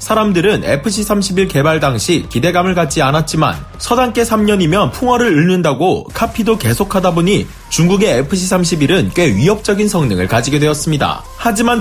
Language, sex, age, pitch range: Korean, male, 30-49, 150-210 Hz